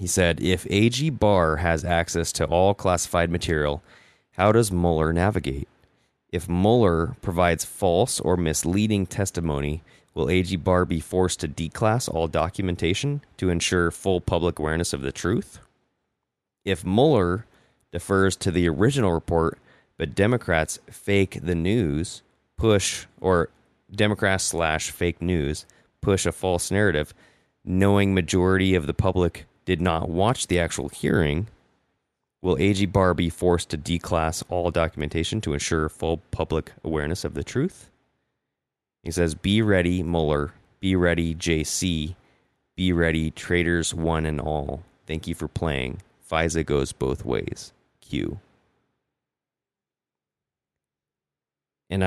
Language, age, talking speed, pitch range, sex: English, 30-49, 130 wpm, 80-95 Hz, male